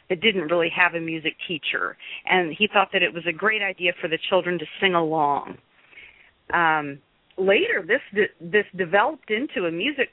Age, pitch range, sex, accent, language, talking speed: 40-59, 175-220 Hz, female, American, English, 180 wpm